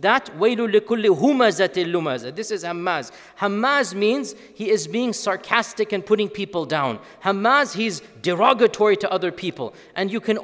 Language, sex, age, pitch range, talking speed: English, male, 40-59, 185-235 Hz, 150 wpm